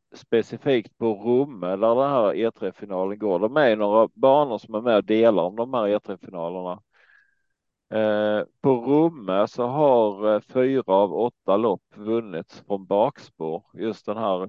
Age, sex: 40-59, male